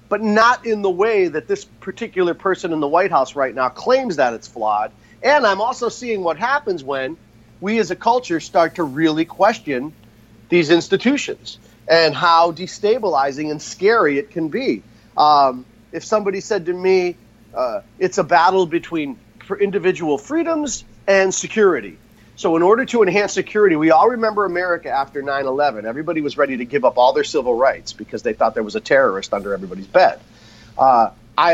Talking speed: 175 wpm